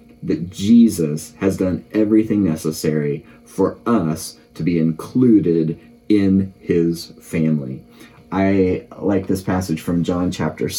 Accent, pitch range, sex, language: American, 80-105 Hz, male, English